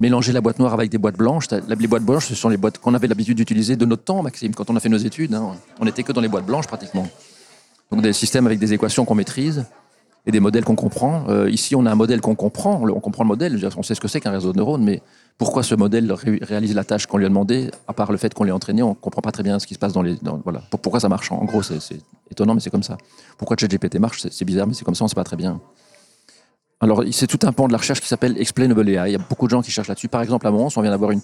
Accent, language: French, French